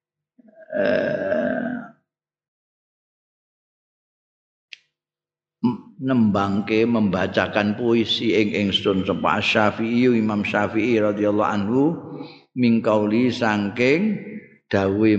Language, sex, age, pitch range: Indonesian, male, 50-69, 100-125 Hz